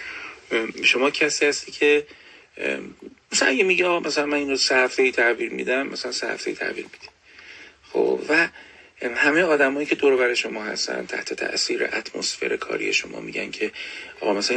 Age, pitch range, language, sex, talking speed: 40-59, 365-430 Hz, Persian, male, 150 wpm